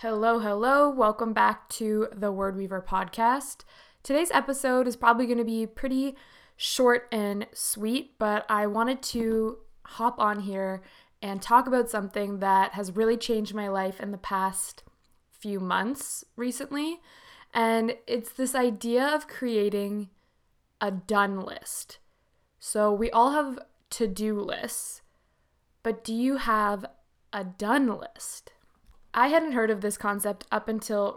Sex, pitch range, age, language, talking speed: female, 200-240 Hz, 20-39, English, 140 wpm